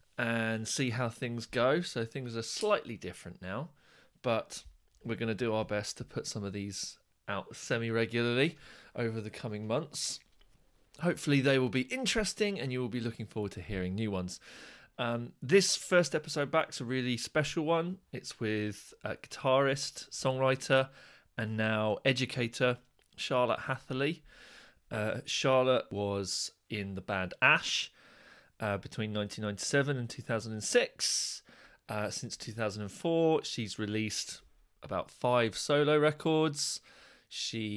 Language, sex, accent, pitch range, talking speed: English, male, British, 110-140 Hz, 135 wpm